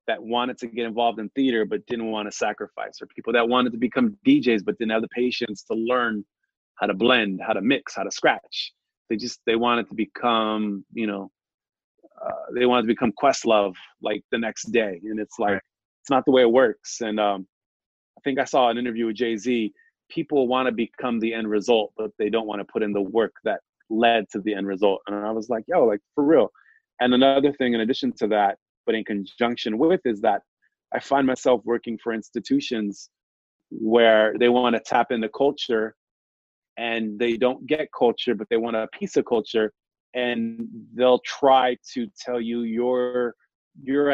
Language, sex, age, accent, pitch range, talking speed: English, male, 30-49, American, 110-125 Hz, 205 wpm